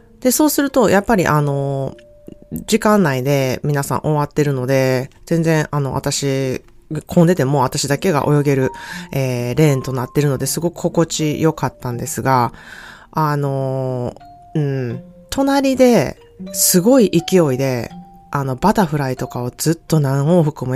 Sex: female